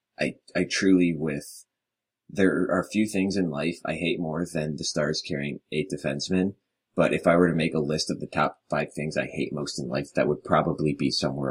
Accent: American